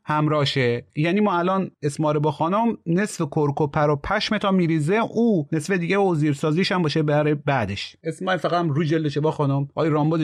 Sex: male